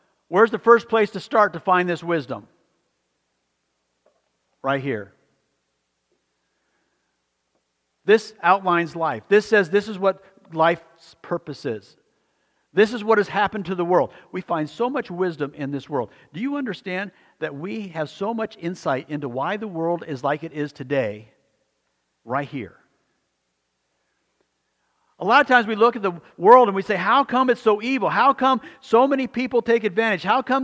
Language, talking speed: English, 165 wpm